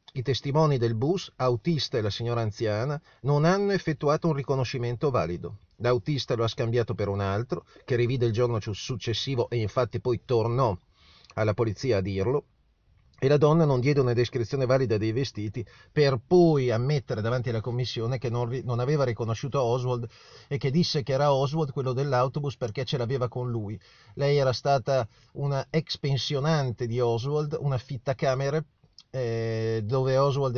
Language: Italian